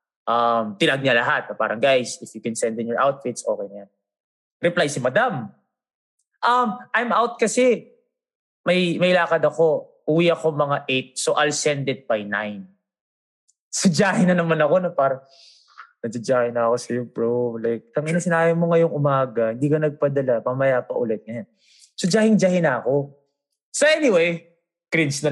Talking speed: 165 wpm